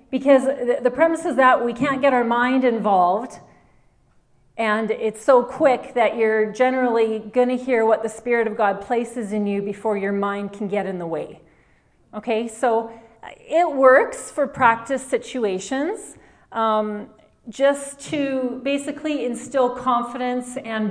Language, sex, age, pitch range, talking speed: English, female, 40-59, 220-260 Hz, 145 wpm